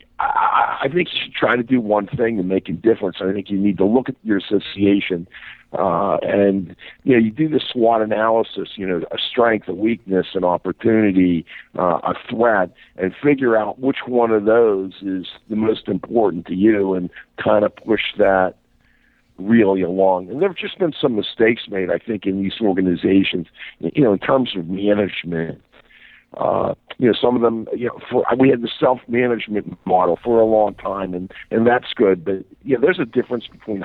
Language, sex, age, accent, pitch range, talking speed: English, male, 50-69, American, 95-115 Hz, 200 wpm